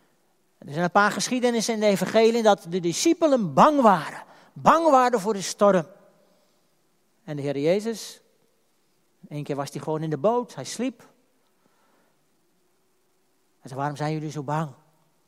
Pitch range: 160-215 Hz